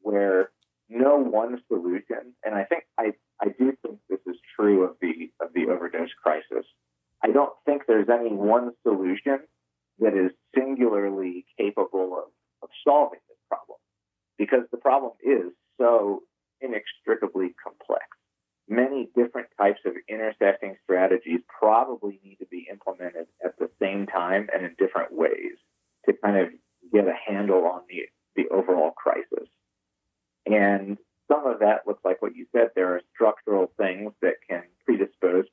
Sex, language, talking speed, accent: male, English, 150 wpm, American